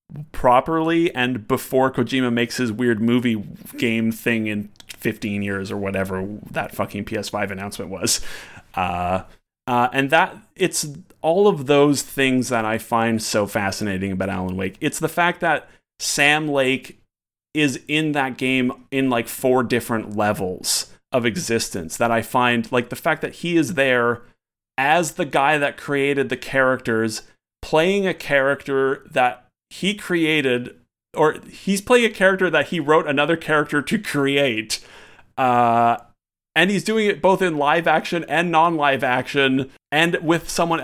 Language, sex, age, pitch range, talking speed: English, male, 30-49, 115-160 Hz, 155 wpm